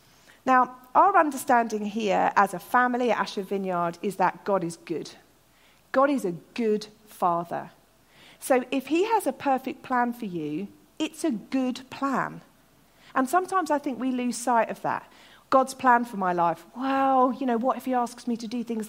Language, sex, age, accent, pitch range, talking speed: English, female, 40-59, British, 215-315 Hz, 185 wpm